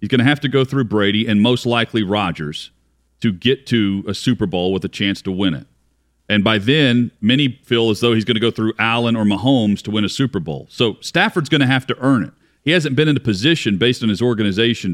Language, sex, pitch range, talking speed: English, male, 105-135 Hz, 250 wpm